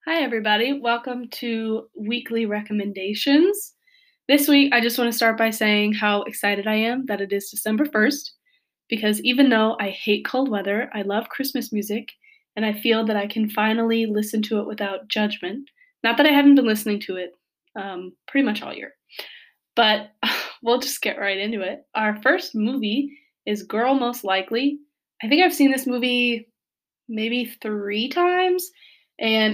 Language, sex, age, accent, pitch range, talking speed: English, female, 20-39, American, 210-250 Hz, 170 wpm